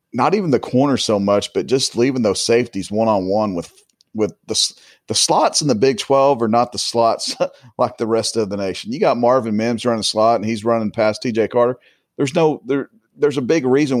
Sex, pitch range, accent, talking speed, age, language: male, 105-130 Hz, American, 225 wpm, 40-59, English